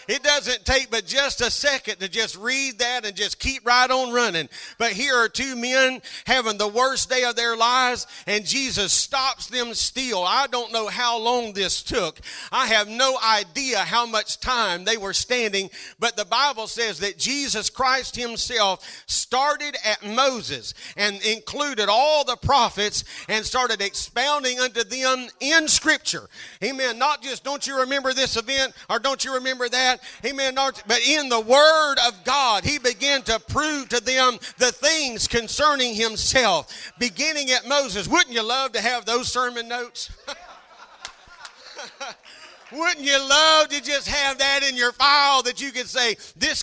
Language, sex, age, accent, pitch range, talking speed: English, male, 40-59, American, 225-270 Hz, 165 wpm